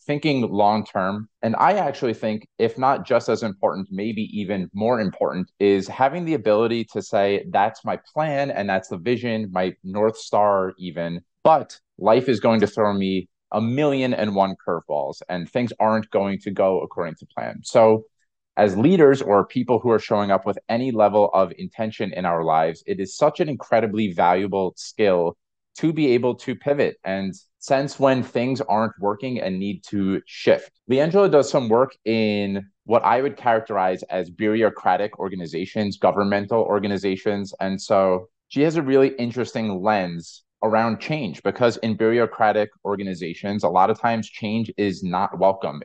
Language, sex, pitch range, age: English, male, 95-120 Hz, 30-49